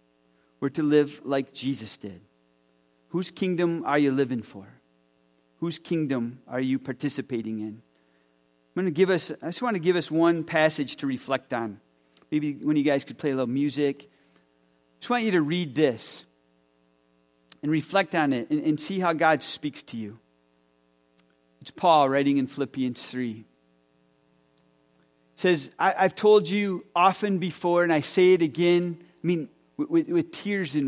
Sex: male